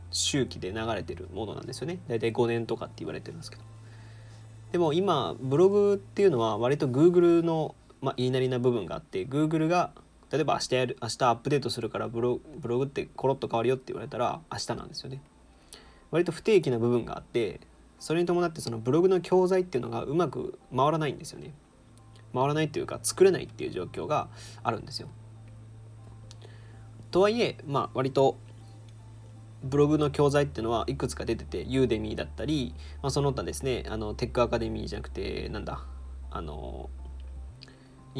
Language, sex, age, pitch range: Japanese, male, 20-39, 110-145 Hz